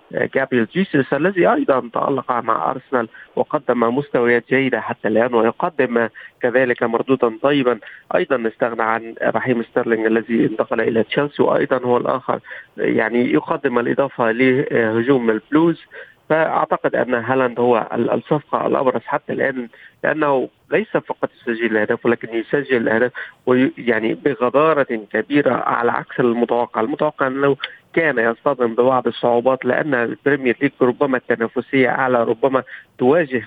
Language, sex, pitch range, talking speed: Arabic, male, 115-135 Hz, 125 wpm